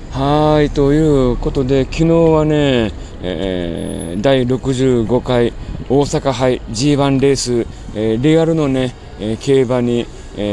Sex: male